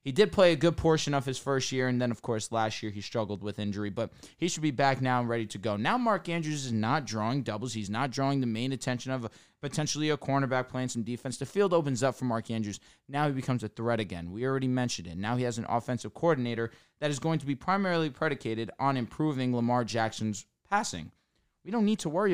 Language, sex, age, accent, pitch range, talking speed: English, male, 20-39, American, 115-150 Hz, 240 wpm